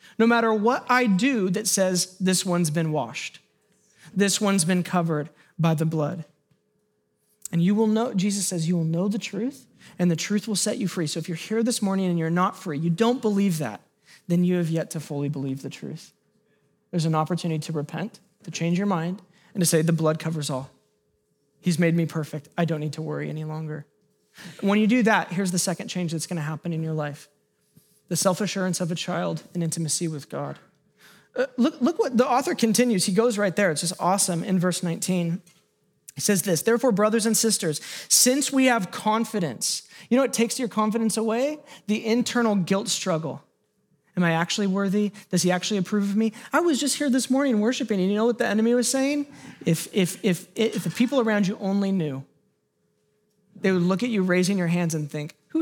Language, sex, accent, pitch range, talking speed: English, male, American, 165-215 Hz, 210 wpm